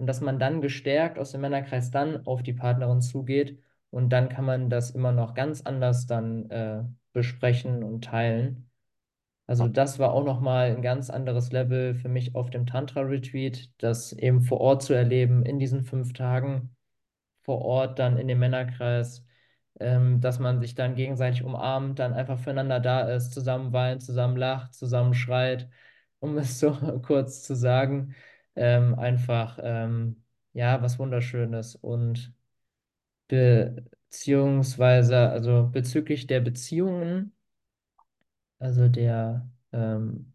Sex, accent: male, German